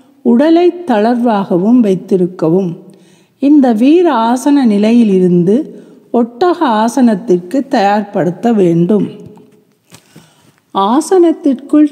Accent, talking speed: native, 55 wpm